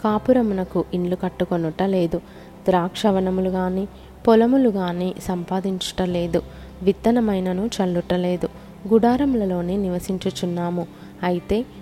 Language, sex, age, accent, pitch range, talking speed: Telugu, female, 20-39, native, 175-210 Hz, 80 wpm